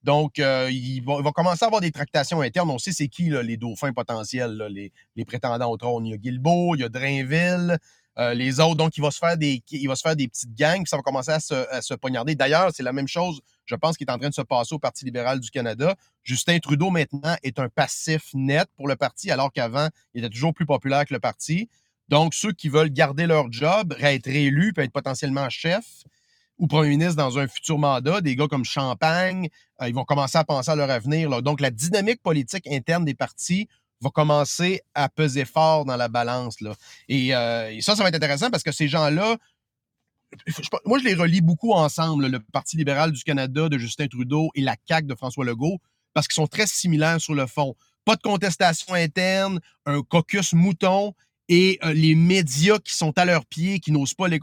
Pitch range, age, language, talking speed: 130-170 Hz, 30-49, French, 230 wpm